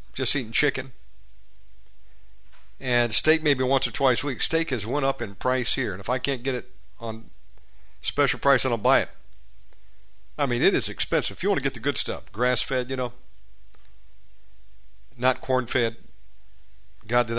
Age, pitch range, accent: 50-69, 100-130 Hz, American